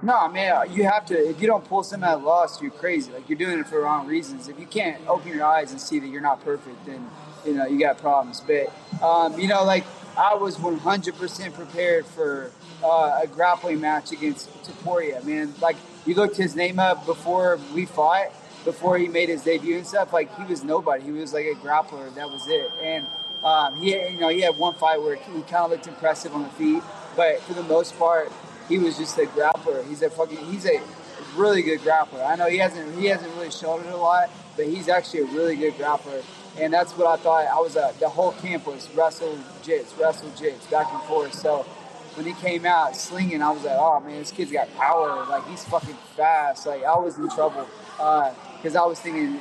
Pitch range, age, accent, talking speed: 155-195 Hz, 20-39, American, 230 wpm